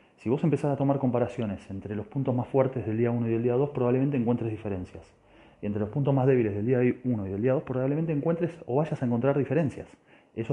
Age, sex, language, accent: 30-49, male, Spanish, Argentinian